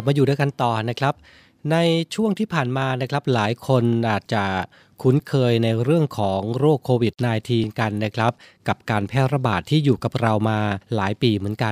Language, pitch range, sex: Thai, 115-145 Hz, male